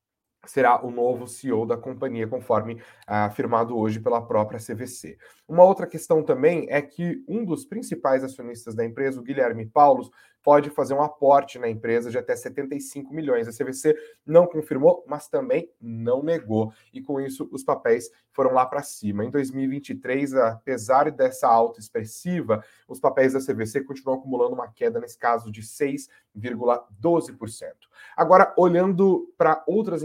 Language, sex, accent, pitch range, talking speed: Portuguese, male, Brazilian, 115-170 Hz, 155 wpm